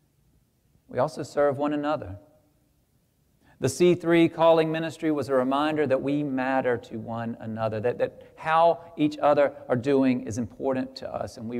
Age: 40-59